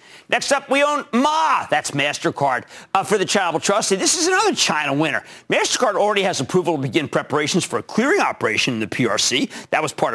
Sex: male